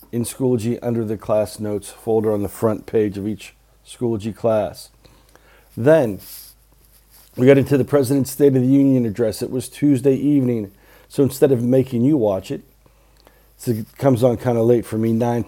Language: English